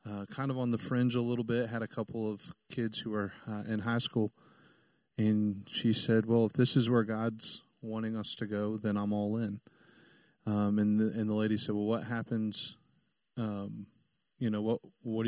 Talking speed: 205 wpm